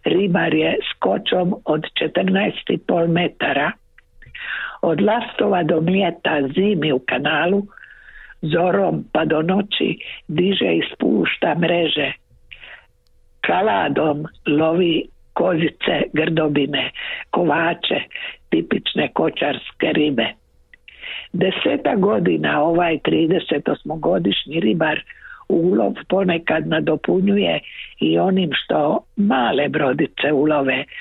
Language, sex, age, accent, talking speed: Croatian, female, 60-79, native, 85 wpm